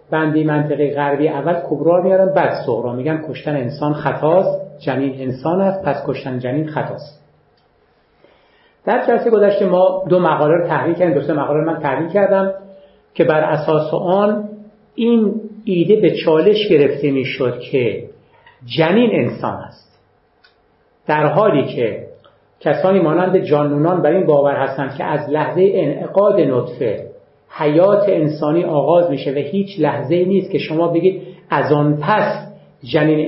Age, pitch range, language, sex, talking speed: 50-69, 145-195 Hz, Persian, male, 135 wpm